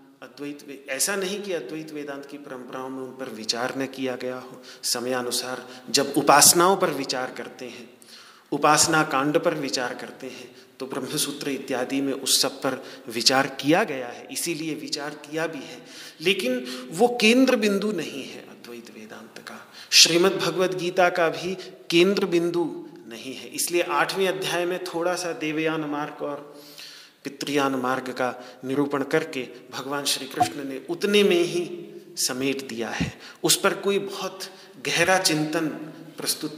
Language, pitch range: Hindi, 130-185 Hz